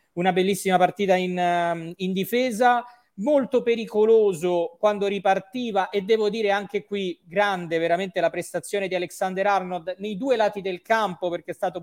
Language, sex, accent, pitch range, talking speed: Italian, male, native, 175-220 Hz, 150 wpm